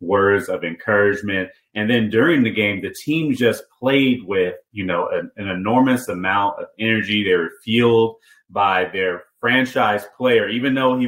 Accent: American